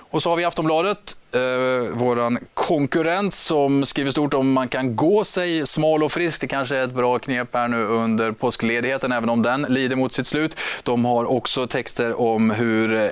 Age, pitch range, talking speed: 20-39, 120-155 Hz, 190 wpm